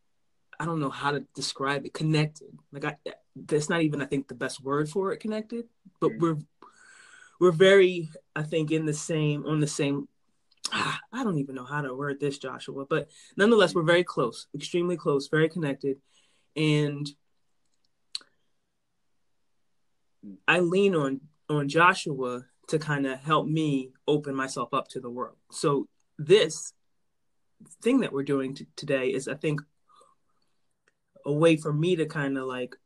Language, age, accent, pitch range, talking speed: English, 20-39, American, 135-160 Hz, 155 wpm